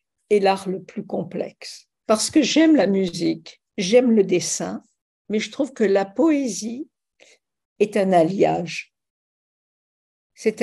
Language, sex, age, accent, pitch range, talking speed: French, female, 60-79, French, 190-240 Hz, 130 wpm